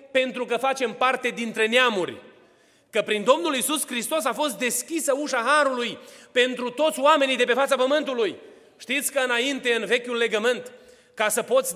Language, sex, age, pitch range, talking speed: Romanian, male, 30-49, 230-290 Hz, 165 wpm